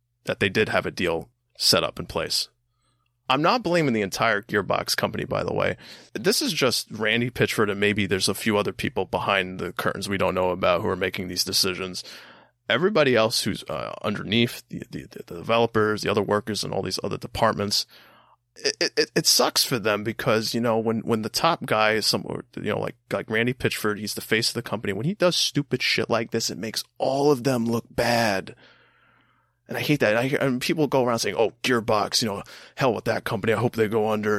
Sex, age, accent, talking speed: male, 20-39, American, 220 wpm